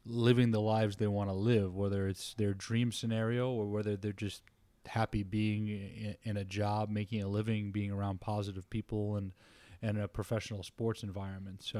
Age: 30-49